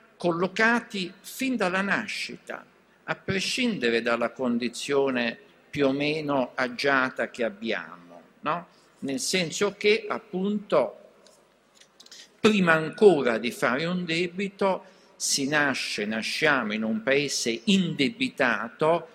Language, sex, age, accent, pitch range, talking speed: Italian, male, 50-69, native, 130-200 Hz, 95 wpm